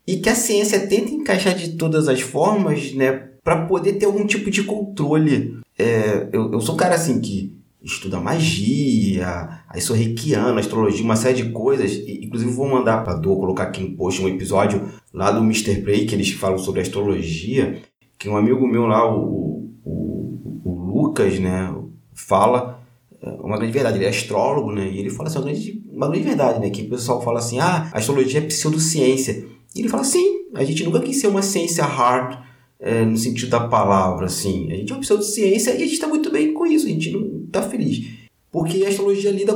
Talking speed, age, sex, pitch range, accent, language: 205 wpm, 20-39, male, 110-180 Hz, Brazilian, Portuguese